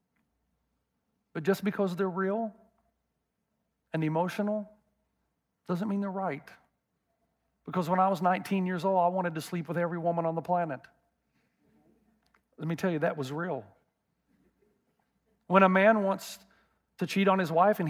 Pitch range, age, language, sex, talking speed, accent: 165-200 Hz, 40-59, English, male, 150 wpm, American